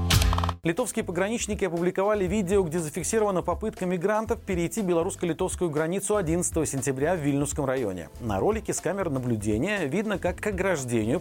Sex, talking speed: male, 135 wpm